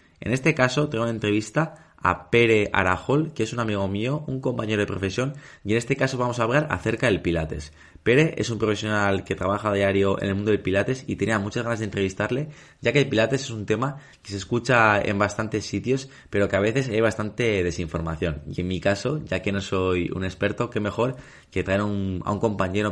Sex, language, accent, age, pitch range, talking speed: male, Spanish, Spanish, 20-39, 95-115 Hz, 215 wpm